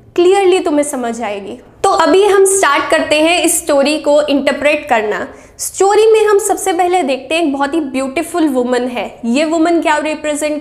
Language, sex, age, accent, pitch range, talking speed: Hindi, female, 10-29, native, 265-335 Hz, 180 wpm